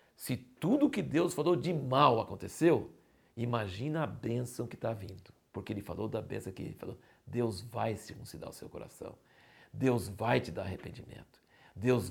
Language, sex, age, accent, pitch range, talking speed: Portuguese, male, 60-79, Brazilian, 105-135 Hz, 175 wpm